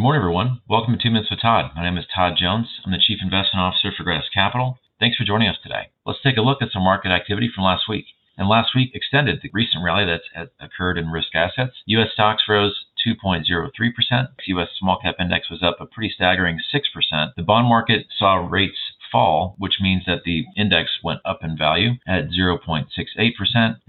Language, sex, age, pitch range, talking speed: English, male, 40-59, 85-105 Hz, 205 wpm